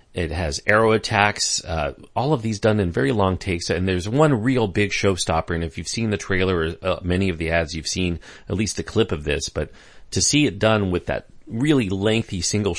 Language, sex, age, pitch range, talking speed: English, male, 40-59, 85-110 Hz, 230 wpm